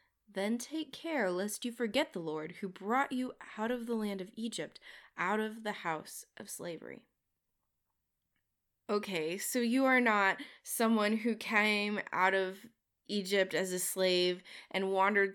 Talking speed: 155 wpm